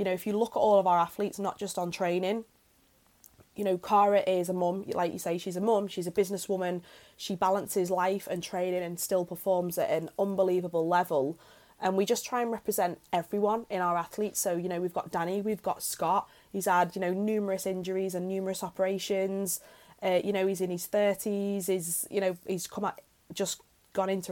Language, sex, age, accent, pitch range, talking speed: English, female, 20-39, British, 175-200 Hz, 205 wpm